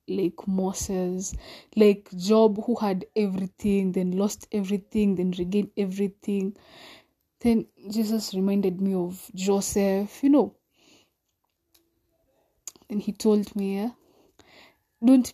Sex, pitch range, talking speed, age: female, 190-215 Hz, 100 wpm, 20-39